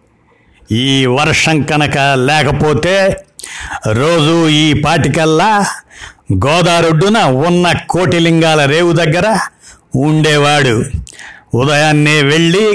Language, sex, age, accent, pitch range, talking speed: Telugu, male, 60-79, native, 140-170 Hz, 70 wpm